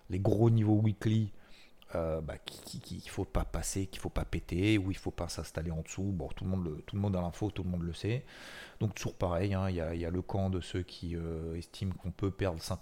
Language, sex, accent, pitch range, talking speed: French, male, French, 85-105 Hz, 265 wpm